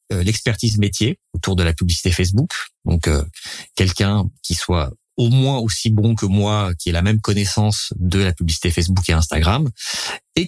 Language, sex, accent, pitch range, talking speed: French, male, French, 90-110 Hz, 170 wpm